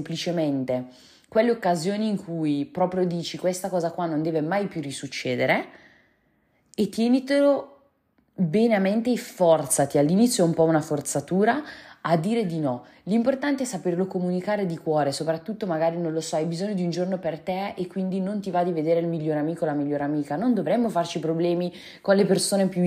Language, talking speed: Italian, 190 wpm